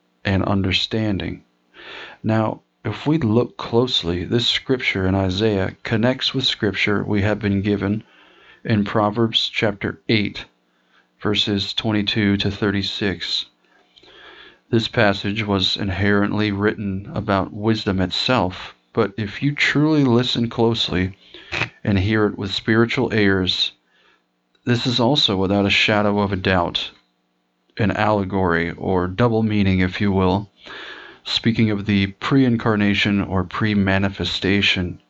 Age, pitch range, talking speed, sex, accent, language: 40-59, 90-110 Hz, 120 wpm, male, American, English